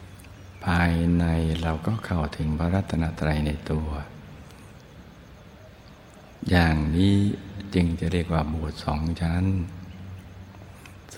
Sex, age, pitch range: male, 60-79, 80-90 Hz